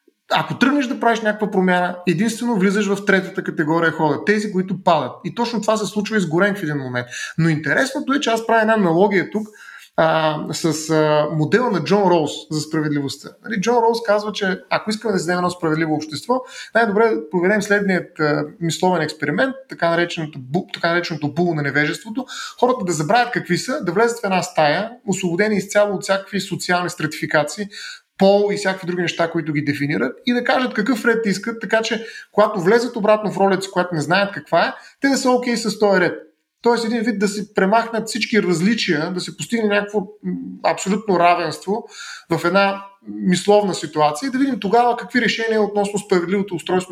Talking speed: 185 wpm